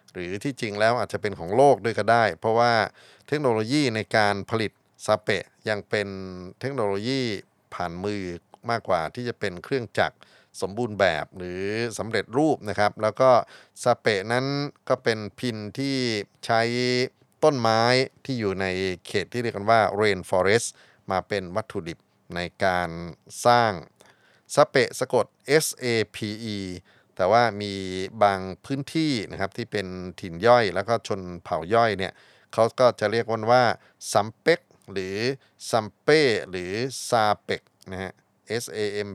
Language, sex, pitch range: Thai, male, 95-120 Hz